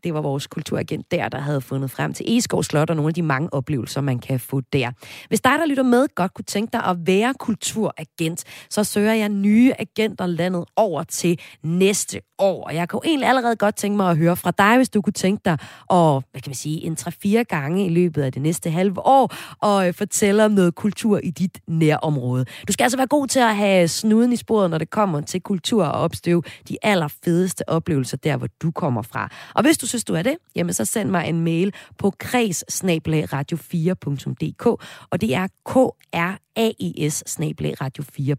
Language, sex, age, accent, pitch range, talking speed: Danish, female, 30-49, native, 155-215 Hz, 205 wpm